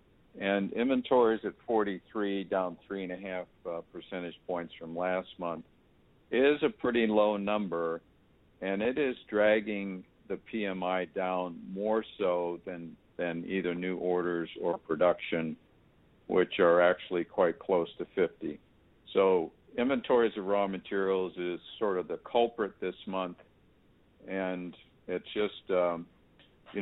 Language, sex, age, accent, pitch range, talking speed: English, male, 50-69, American, 85-100 Hz, 130 wpm